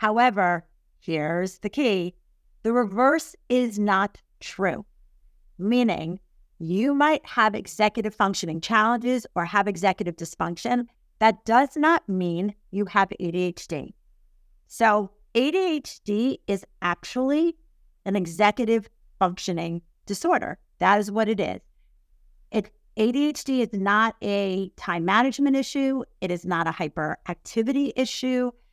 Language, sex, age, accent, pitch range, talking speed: English, female, 50-69, American, 190-245 Hz, 110 wpm